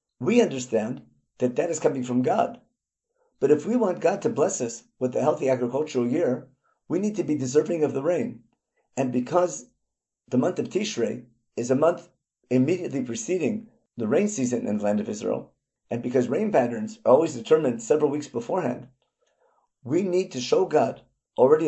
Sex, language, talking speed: male, English, 175 wpm